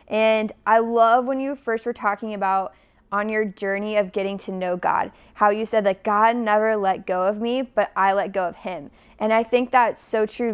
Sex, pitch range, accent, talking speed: female, 195-220 Hz, American, 220 wpm